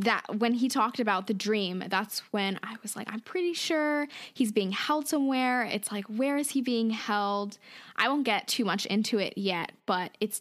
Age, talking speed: 10-29, 210 wpm